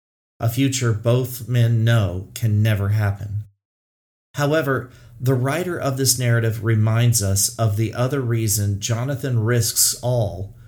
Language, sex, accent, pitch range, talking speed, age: English, male, American, 100-120 Hz, 130 wpm, 40-59